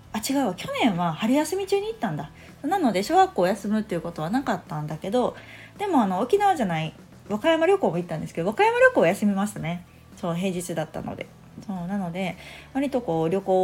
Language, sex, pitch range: Japanese, female, 170-230 Hz